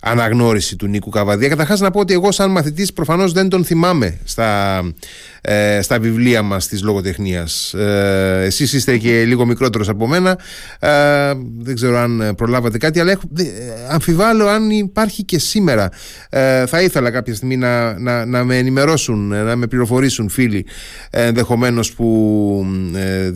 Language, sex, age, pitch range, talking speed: Greek, male, 30-49, 110-170 Hz, 150 wpm